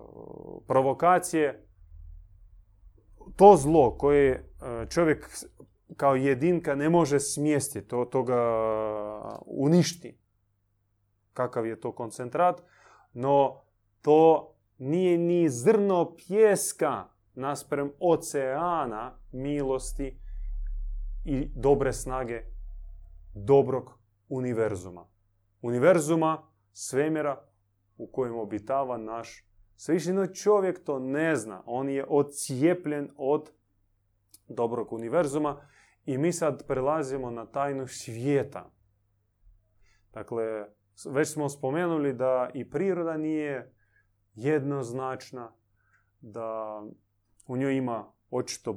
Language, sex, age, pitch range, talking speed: Croatian, male, 30-49, 105-145 Hz, 85 wpm